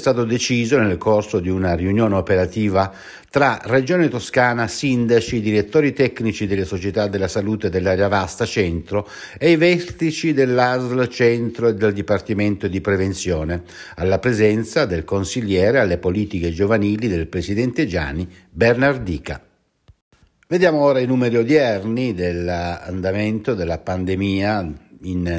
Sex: male